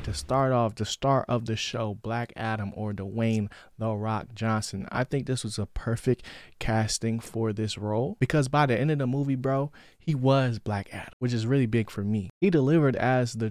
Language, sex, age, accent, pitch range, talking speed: English, male, 20-39, American, 105-130 Hz, 210 wpm